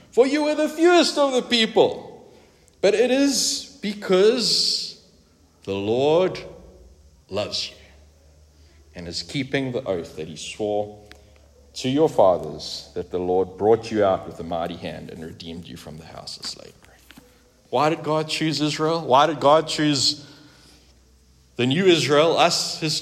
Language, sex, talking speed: English, male, 155 wpm